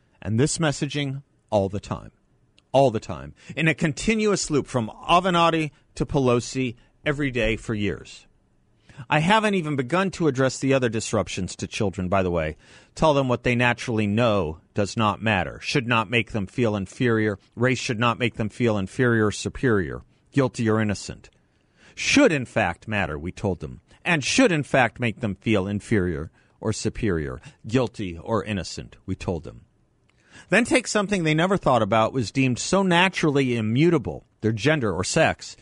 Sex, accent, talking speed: male, American, 170 wpm